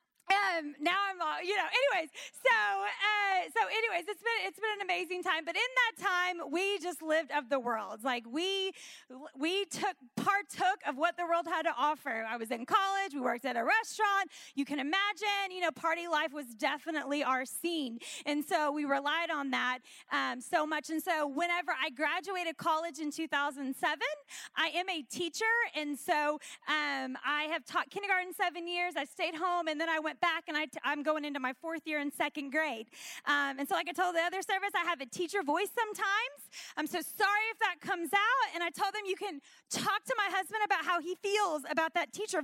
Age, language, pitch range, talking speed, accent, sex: 30-49, English, 300-390 Hz, 210 wpm, American, female